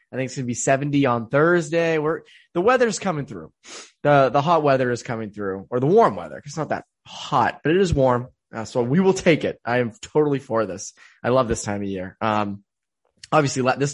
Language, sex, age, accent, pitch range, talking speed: English, male, 20-39, American, 110-150 Hz, 225 wpm